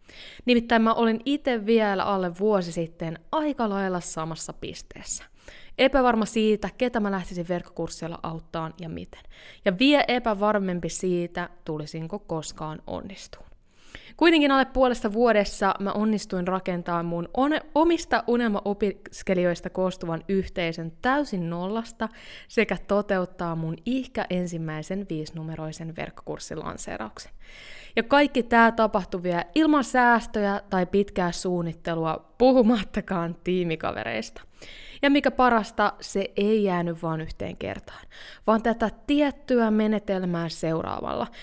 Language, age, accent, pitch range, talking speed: Finnish, 20-39, native, 175-235 Hz, 110 wpm